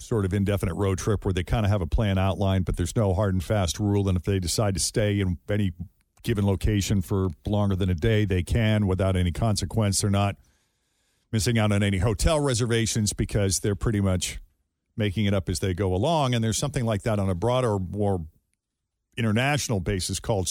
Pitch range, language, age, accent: 95-130 Hz, English, 50-69, American